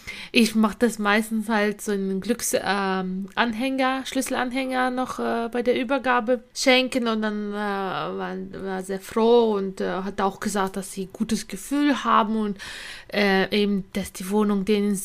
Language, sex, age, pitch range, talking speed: German, female, 20-39, 195-235 Hz, 165 wpm